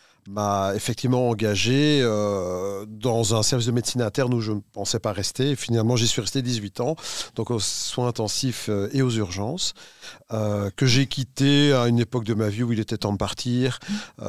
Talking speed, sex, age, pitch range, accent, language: 195 wpm, male, 40-59, 105-125 Hz, French, French